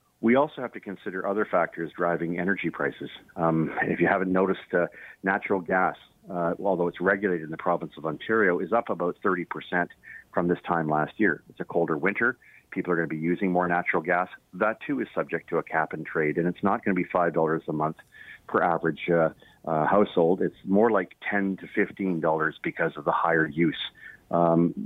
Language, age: English, 40-59